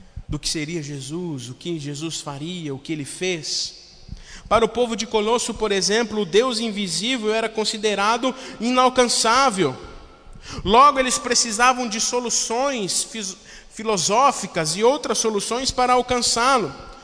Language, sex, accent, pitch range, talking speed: Portuguese, male, Brazilian, 205-255 Hz, 125 wpm